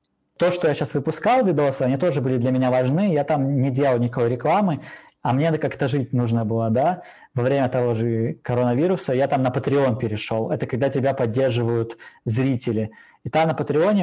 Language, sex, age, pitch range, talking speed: Russian, male, 20-39, 120-150 Hz, 195 wpm